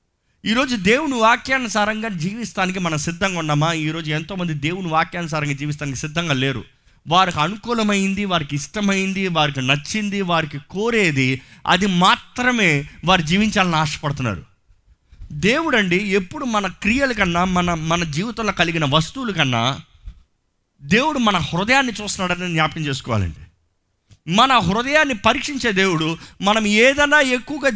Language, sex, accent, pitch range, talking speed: Telugu, male, native, 150-220 Hz, 110 wpm